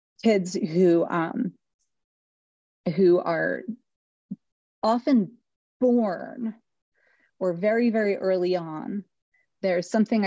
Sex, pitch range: female, 175-220 Hz